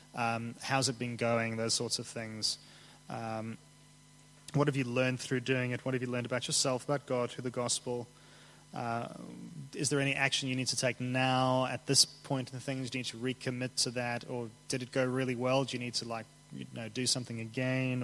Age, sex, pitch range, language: 20-39, male, 115-140 Hz, English